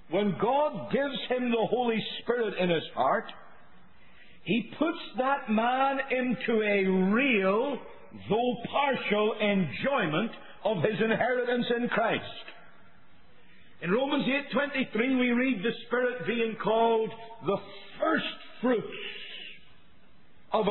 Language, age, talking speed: English, 50-69, 110 wpm